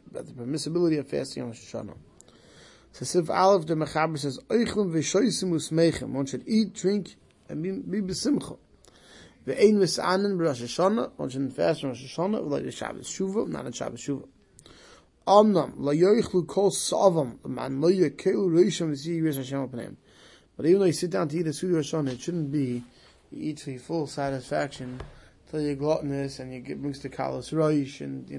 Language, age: English, 20-39